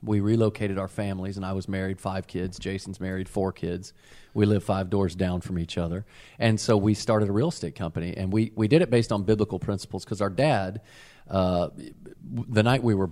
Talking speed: 215 wpm